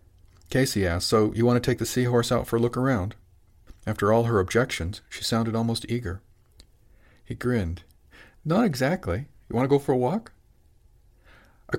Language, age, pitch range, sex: English, 50-69, 95-120 Hz, male